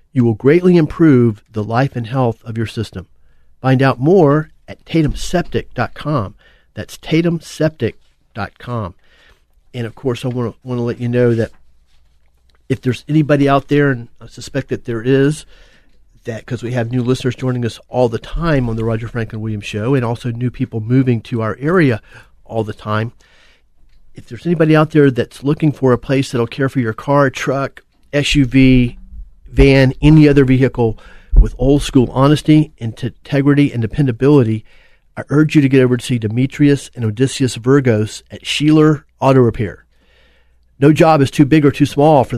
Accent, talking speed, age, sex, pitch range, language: American, 175 wpm, 40-59, male, 115-140 Hz, English